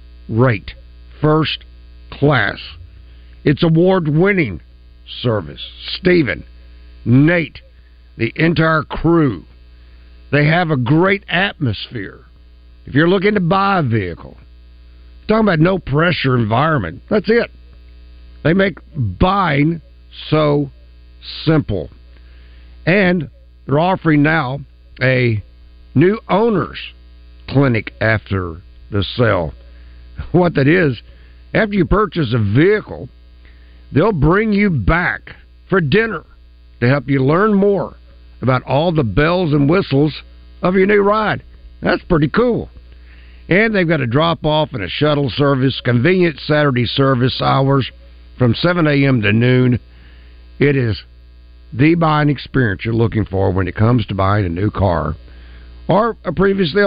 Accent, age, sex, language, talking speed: American, 60-79, male, English, 125 wpm